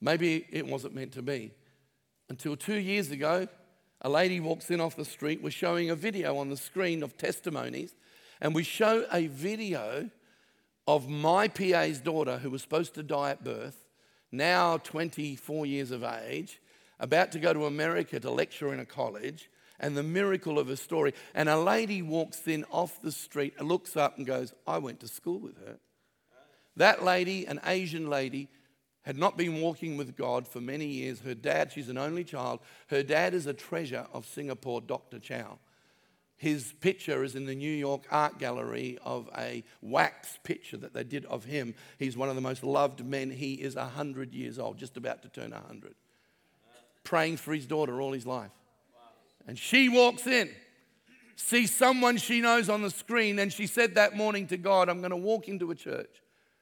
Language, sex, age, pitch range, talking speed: English, male, 50-69, 140-180 Hz, 185 wpm